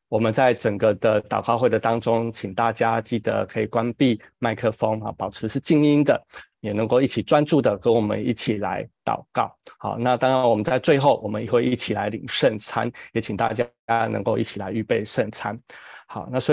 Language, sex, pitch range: Chinese, male, 110-135 Hz